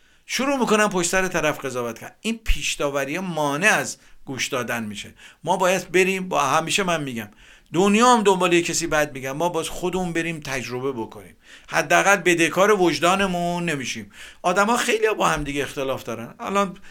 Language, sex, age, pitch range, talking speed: Persian, male, 50-69, 140-190 Hz, 160 wpm